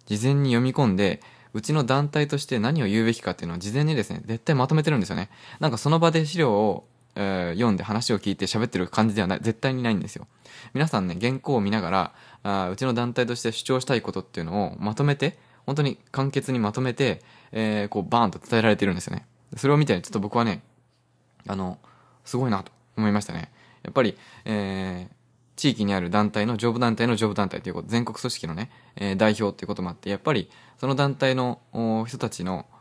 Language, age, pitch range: Japanese, 20-39, 100-130 Hz